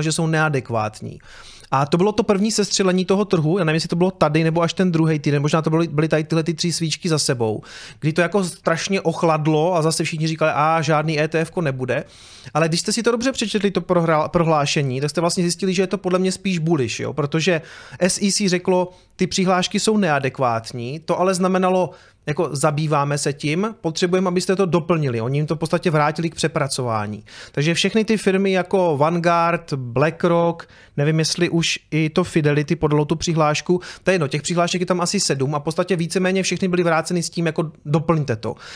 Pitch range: 150-185 Hz